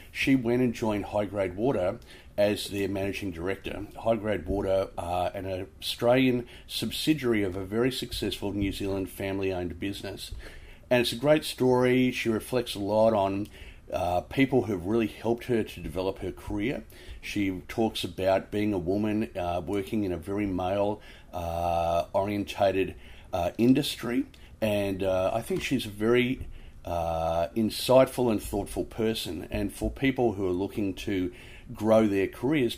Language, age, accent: English, 40-59, Australian